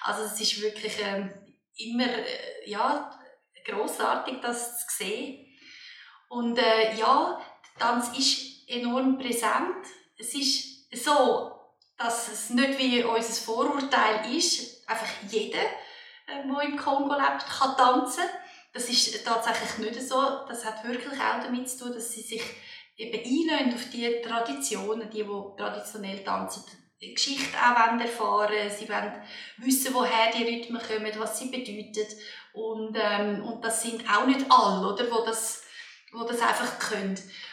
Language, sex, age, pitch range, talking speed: German, female, 20-39, 220-260 Hz, 145 wpm